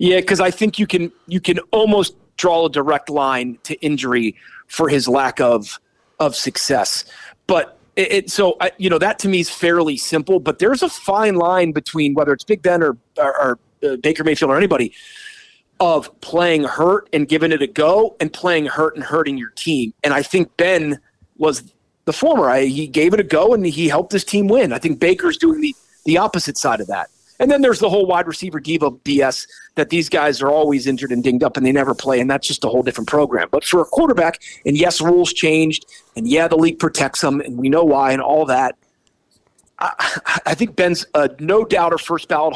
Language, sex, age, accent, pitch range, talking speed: English, male, 30-49, American, 145-185 Hz, 215 wpm